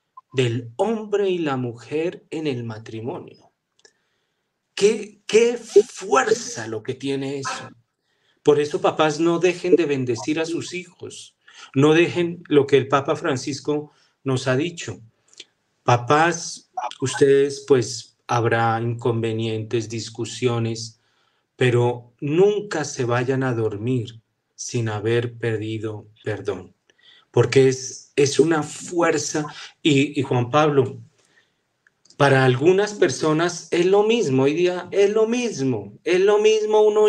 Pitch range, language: 120-185 Hz, Spanish